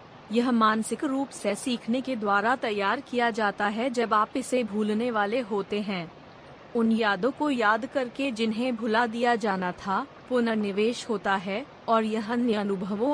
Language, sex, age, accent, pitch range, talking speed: Hindi, female, 30-49, native, 210-250 Hz, 155 wpm